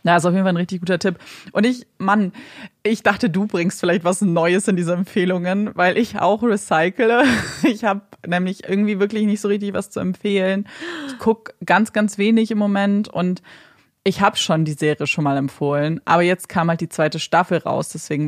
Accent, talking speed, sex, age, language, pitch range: German, 205 wpm, female, 30-49, German, 160-205 Hz